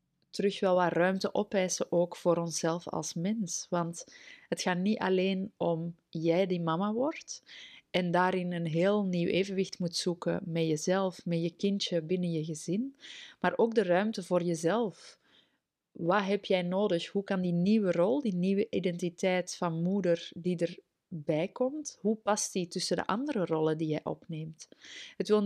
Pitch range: 170-200 Hz